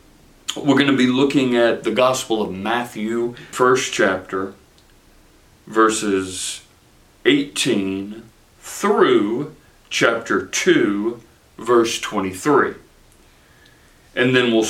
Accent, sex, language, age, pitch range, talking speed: American, male, English, 40-59, 95-115 Hz, 90 wpm